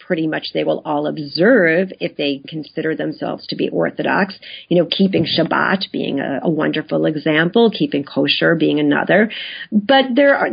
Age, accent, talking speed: 40-59, American, 165 wpm